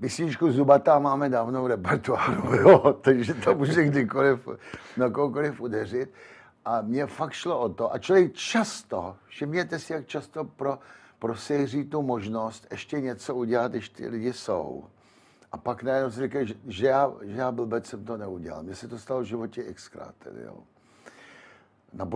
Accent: native